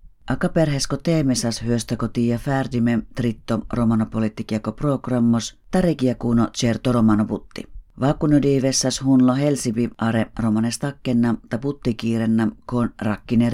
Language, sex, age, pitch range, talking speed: Finnish, female, 40-59, 115-130 Hz, 100 wpm